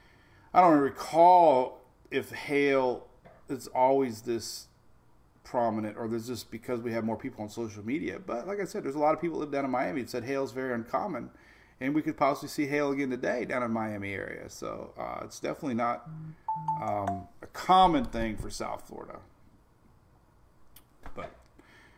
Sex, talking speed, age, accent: male, 175 wpm, 40-59, American